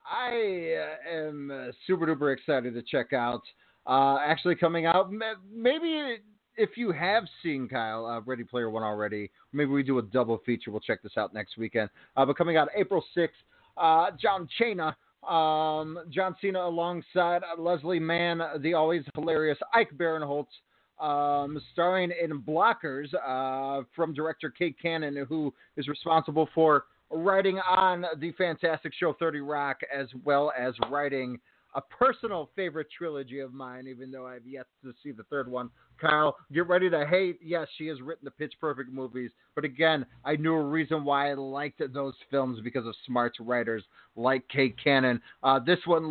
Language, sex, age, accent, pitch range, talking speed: English, male, 30-49, American, 135-180 Hz, 165 wpm